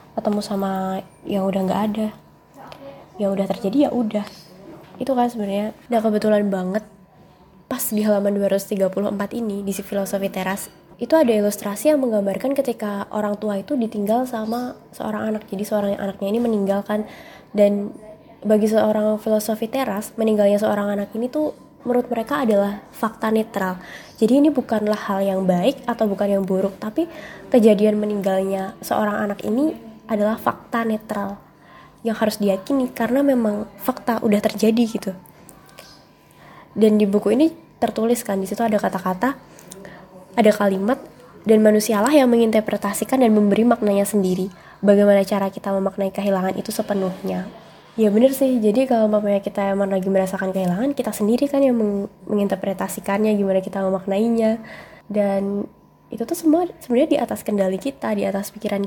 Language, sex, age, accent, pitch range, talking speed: Indonesian, female, 20-39, native, 195-225 Hz, 145 wpm